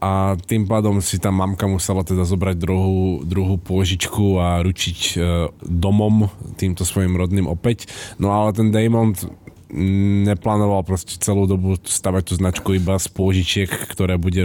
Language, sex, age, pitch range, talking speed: Slovak, male, 20-39, 90-100 Hz, 145 wpm